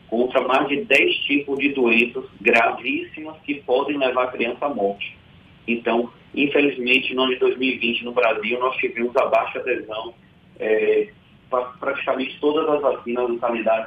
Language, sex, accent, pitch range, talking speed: Portuguese, male, Brazilian, 115-145 Hz, 150 wpm